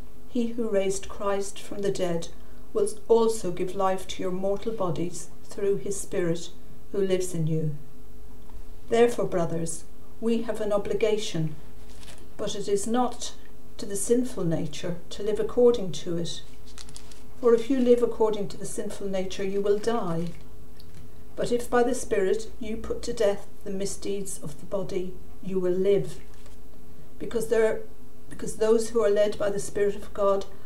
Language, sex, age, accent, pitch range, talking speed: English, female, 50-69, British, 180-225 Hz, 160 wpm